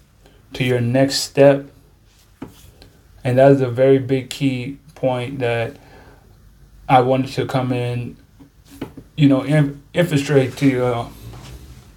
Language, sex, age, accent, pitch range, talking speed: English, male, 20-39, American, 120-140 Hz, 120 wpm